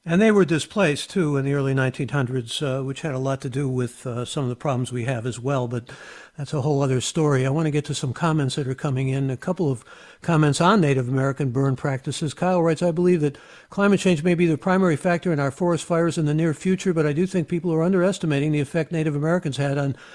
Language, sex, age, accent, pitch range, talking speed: English, male, 60-79, American, 140-175 Hz, 255 wpm